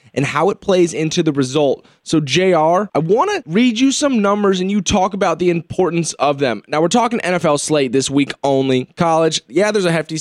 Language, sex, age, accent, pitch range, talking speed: English, male, 20-39, American, 145-180 Hz, 220 wpm